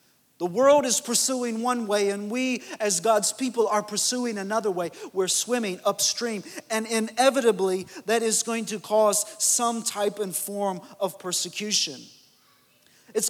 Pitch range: 185-230 Hz